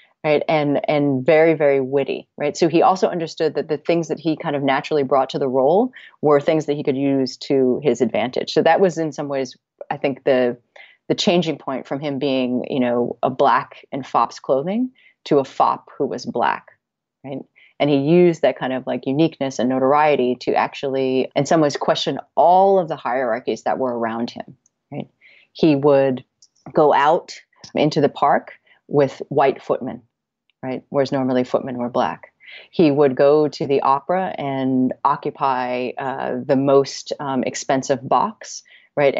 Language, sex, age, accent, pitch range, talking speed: English, female, 30-49, American, 130-155 Hz, 180 wpm